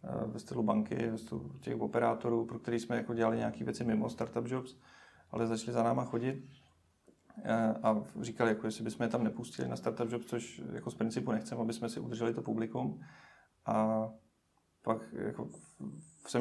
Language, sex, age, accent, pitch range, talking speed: Czech, male, 30-49, native, 110-125 Hz, 170 wpm